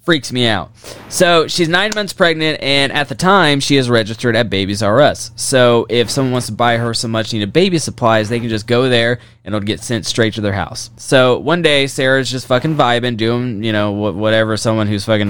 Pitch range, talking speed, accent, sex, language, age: 110-140 Hz, 225 wpm, American, male, English, 20-39